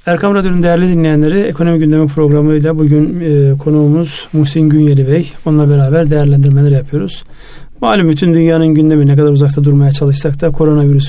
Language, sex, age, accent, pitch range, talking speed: Turkish, male, 50-69, native, 145-165 Hz, 150 wpm